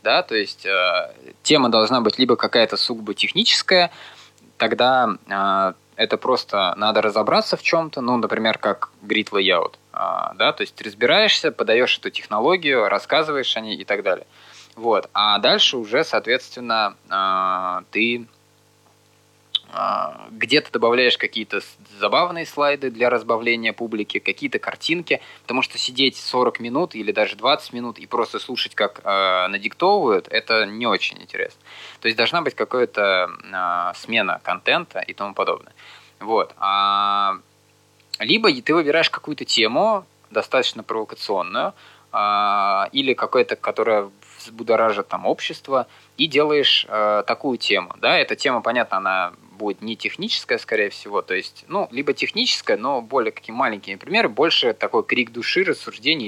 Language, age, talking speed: Russian, 20-39, 140 wpm